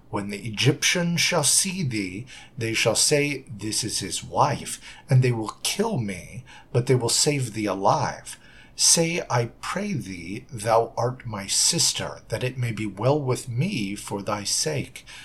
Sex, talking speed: male, 165 wpm